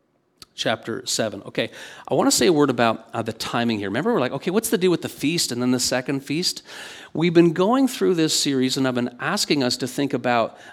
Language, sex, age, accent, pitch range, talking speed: English, male, 50-69, American, 120-155 Hz, 240 wpm